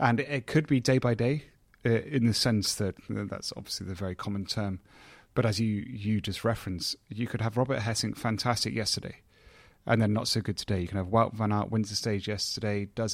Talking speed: 230 wpm